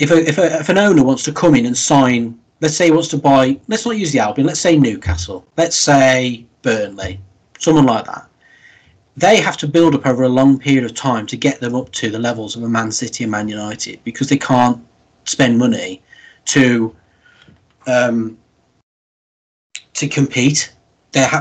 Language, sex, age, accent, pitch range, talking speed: English, male, 30-49, British, 115-150 Hz, 180 wpm